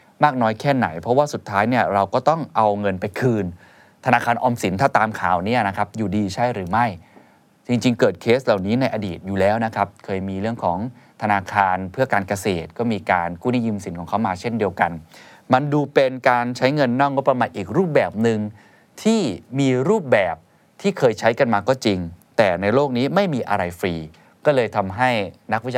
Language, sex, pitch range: Thai, male, 95-125 Hz